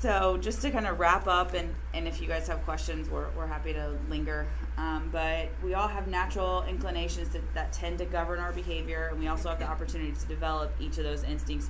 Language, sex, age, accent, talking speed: English, female, 30-49, American, 230 wpm